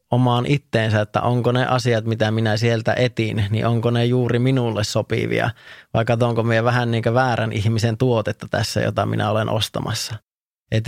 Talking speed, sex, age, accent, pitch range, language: 165 wpm, male, 20-39, native, 110-125 Hz, Finnish